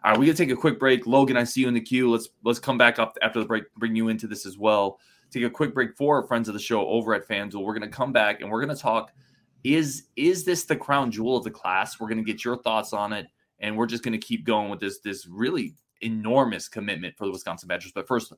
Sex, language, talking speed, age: male, English, 290 wpm, 20-39